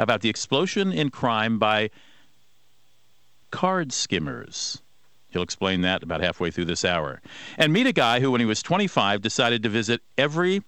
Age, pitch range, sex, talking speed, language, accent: 50-69, 95-115 Hz, male, 165 wpm, English, American